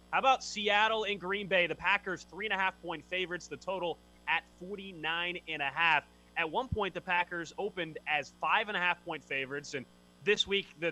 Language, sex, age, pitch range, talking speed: English, male, 20-39, 130-175 Hz, 150 wpm